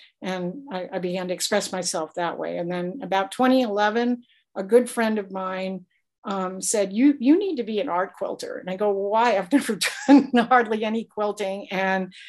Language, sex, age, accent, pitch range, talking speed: English, female, 50-69, American, 185-230 Hz, 195 wpm